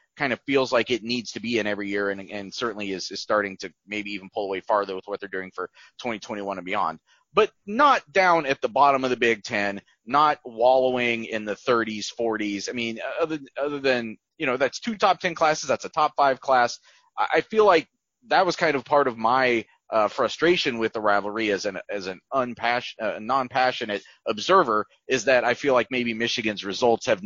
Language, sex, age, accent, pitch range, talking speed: English, male, 30-49, American, 100-135 Hz, 215 wpm